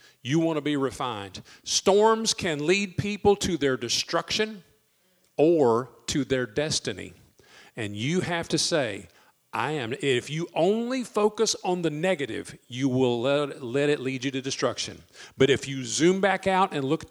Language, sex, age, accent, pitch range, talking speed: English, male, 50-69, American, 130-180 Hz, 165 wpm